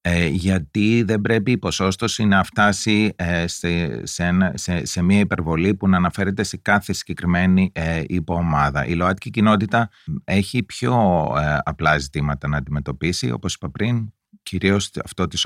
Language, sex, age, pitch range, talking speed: Greek, male, 30-49, 80-105 Hz, 150 wpm